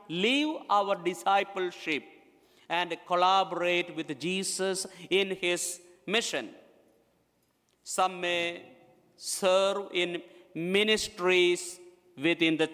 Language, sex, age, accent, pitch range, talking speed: English, male, 50-69, Indian, 175-215 Hz, 80 wpm